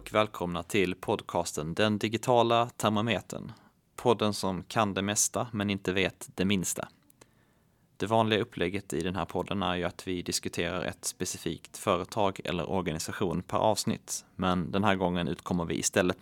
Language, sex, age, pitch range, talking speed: Swedish, male, 30-49, 90-100 Hz, 160 wpm